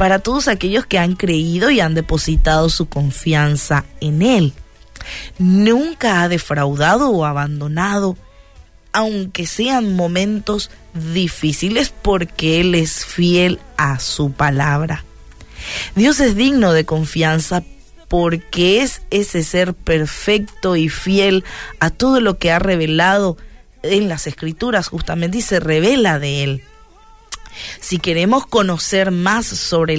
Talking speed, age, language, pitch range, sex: 120 wpm, 30-49, Spanish, 155-205 Hz, female